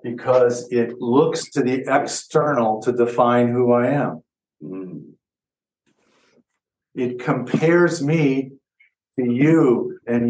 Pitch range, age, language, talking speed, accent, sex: 125-160 Hz, 50-69, English, 100 wpm, American, male